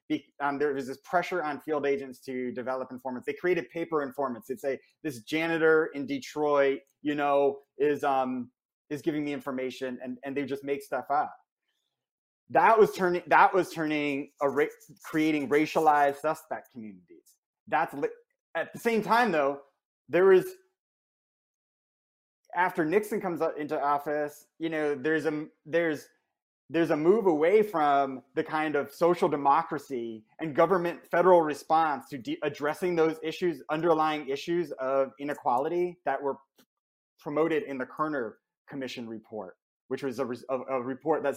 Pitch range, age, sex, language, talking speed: 135-165 Hz, 30-49, male, English, 150 wpm